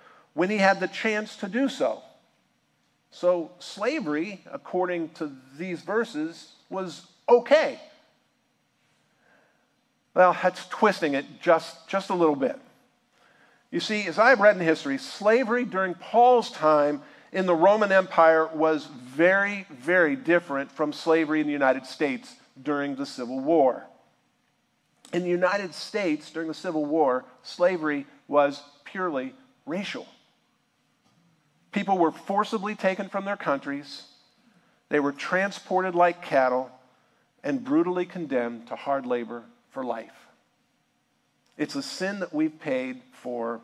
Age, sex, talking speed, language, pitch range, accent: 50-69, male, 130 wpm, English, 145-210 Hz, American